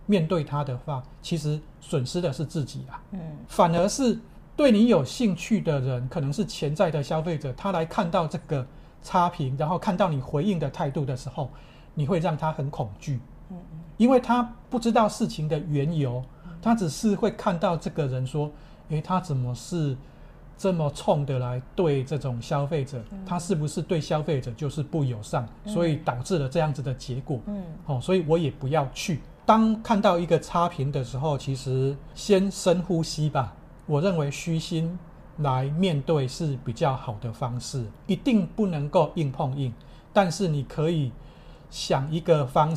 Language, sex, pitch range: Chinese, male, 140-180 Hz